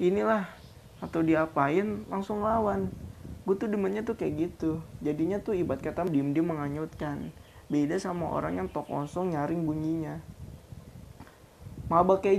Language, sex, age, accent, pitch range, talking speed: Indonesian, male, 20-39, native, 145-185 Hz, 130 wpm